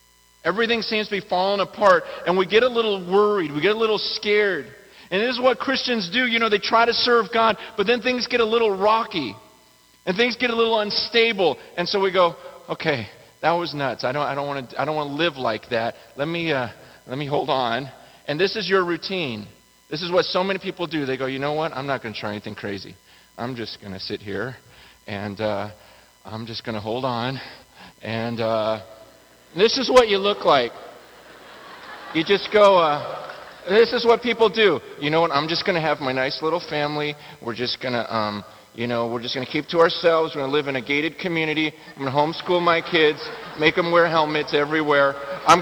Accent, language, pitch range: American, English, 140-195 Hz